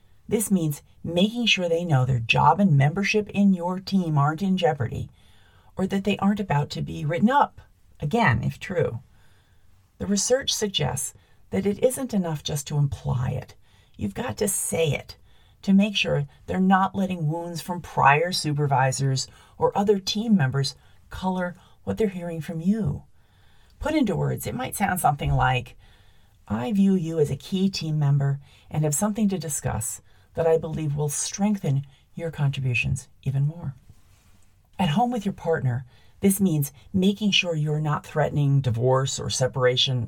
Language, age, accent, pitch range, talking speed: English, 40-59, American, 125-185 Hz, 165 wpm